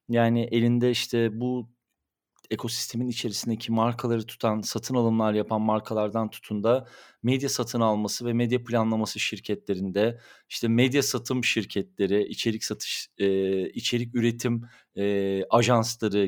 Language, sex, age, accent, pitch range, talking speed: Turkish, male, 40-59, native, 105-125 Hz, 115 wpm